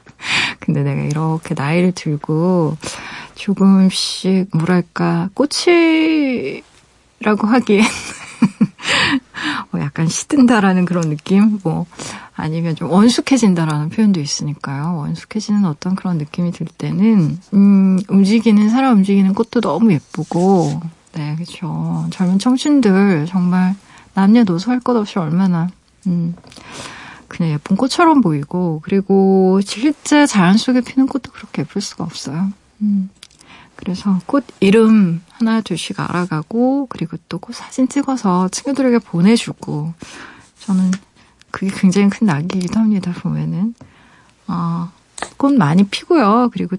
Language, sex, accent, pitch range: Korean, female, native, 170-225 Hz